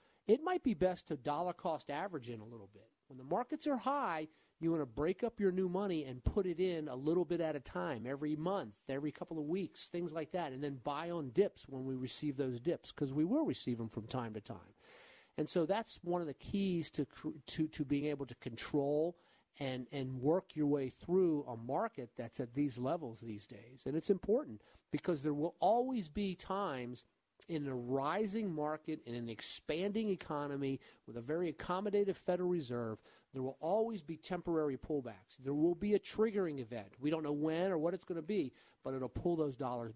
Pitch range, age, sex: 130-175 Hz, 50-69, male